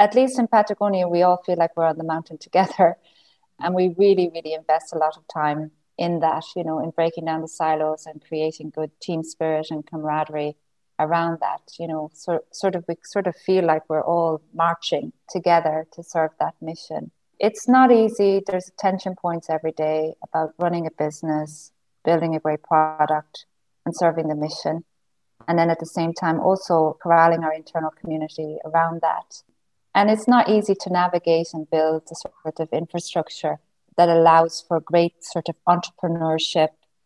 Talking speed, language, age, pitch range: 180 wpm, English, 30-49, 155-175 Hz